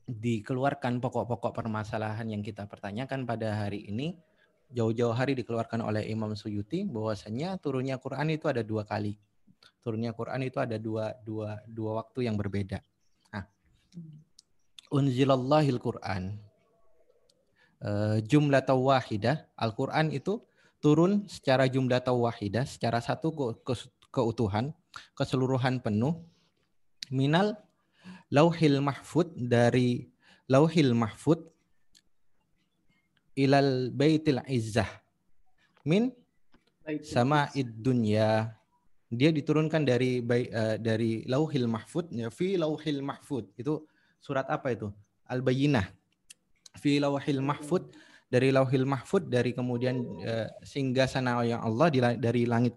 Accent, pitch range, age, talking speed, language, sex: native, 115-150 Hz, 20-39, 105 wpm, Indonesian, male